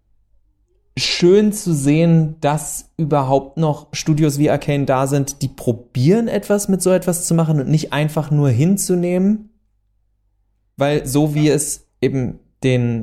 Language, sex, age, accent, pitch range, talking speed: German, male, 20-39, German, 115-145 Hz, 140 wpm